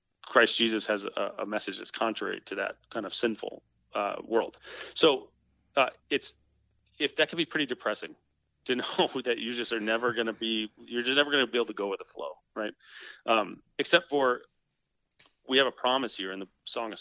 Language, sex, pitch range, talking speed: English, male, 105-125 Hz, 210 wpm